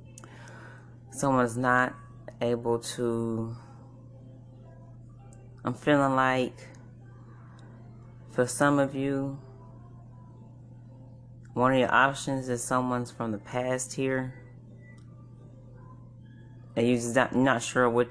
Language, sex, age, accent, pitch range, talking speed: English, female, 30-49, American, 120-130 Hz, 85 wpm